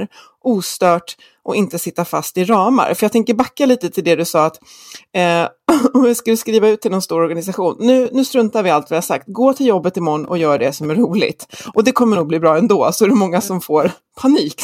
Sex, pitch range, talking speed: female, 170-235 Hz, 240 wpm